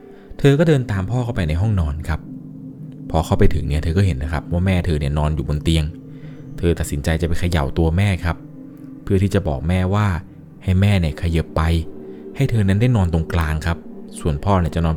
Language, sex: Thai, male